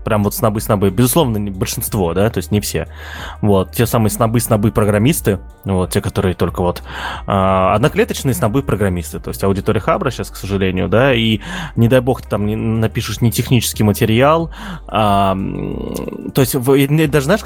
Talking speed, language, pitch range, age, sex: 150 wpm, Russian, 100-130 Hz, 20-39, male